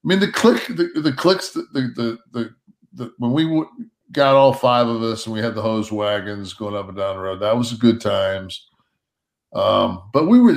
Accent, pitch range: American, 110-150 Hz